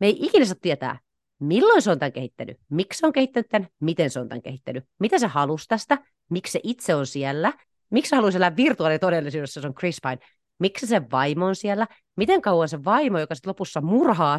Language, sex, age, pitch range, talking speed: Finnish, female, 30-49, 140-205 Hz, 205 wpm